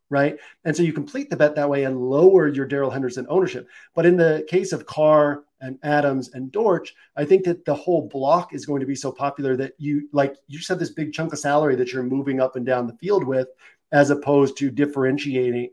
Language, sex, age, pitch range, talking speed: English, male, 40-59, 135-160 Hz, 235 wpm